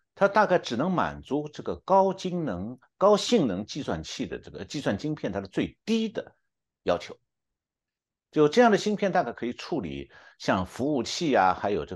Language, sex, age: Chinese, male, 60-79